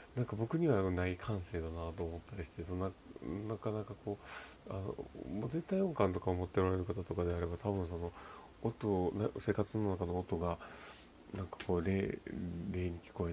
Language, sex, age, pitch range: Japanese, male, 40-59, 85-105 Hz